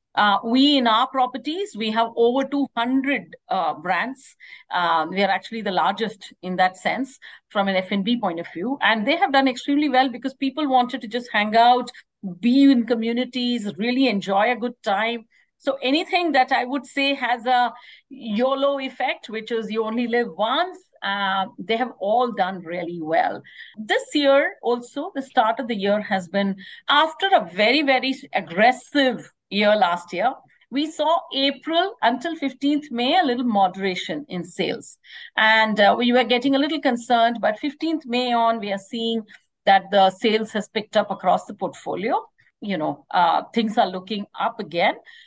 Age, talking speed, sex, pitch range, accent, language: 50-69, 175 wpm, female, 215-275 Hz, Indian, English